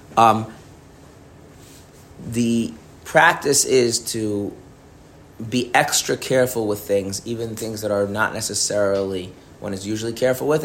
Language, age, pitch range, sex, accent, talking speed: English, 30-49, 100-115 Hz, male, American, 120 wpm